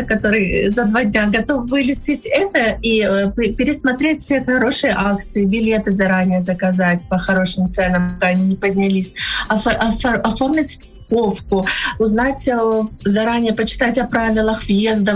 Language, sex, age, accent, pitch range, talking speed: Ukrainian, female, 30-49, native, 200-245 Hz, 120 wpm